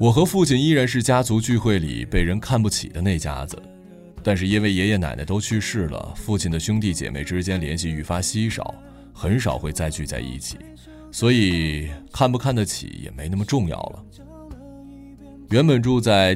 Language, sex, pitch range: Chinese, male, 85-115 Hz